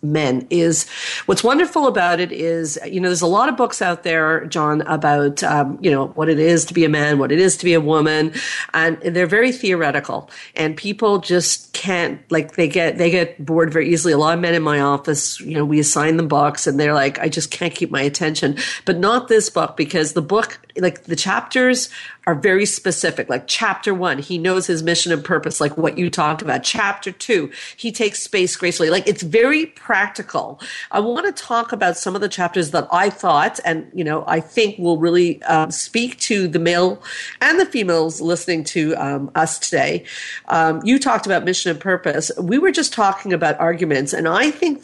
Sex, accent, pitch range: female, American, 160-215 Hz